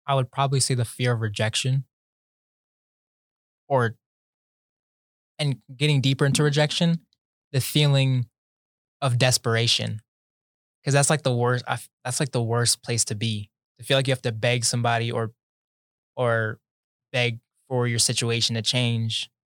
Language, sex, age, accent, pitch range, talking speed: English, male, 20-39, American, 110-130 Hz, 140 wpm